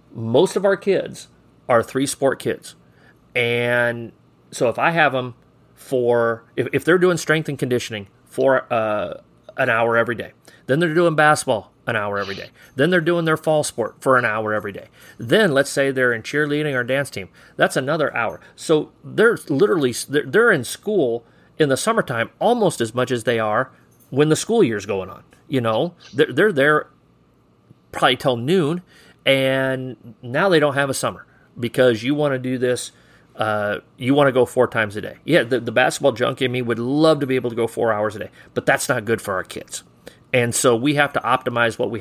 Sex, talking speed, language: male, 200 wpm, English